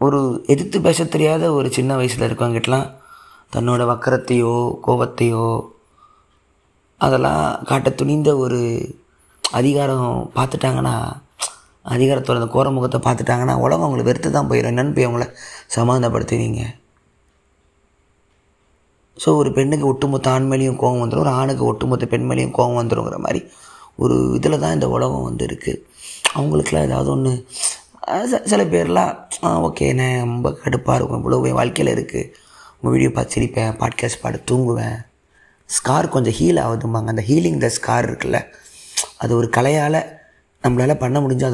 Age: 20-39